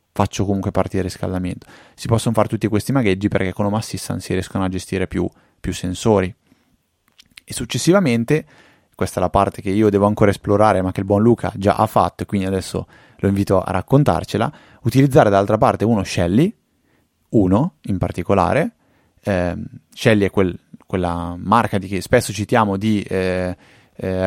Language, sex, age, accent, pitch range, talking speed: Italian, male, 20-39, native, 90-110 Hz, 165 wpm